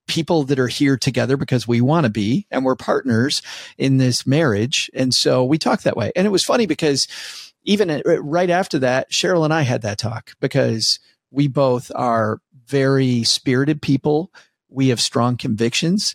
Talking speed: 180 wpm